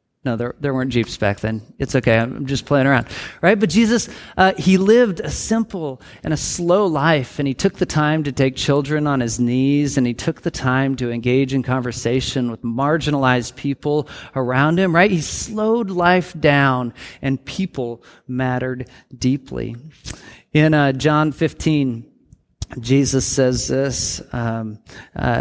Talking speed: 160 wpm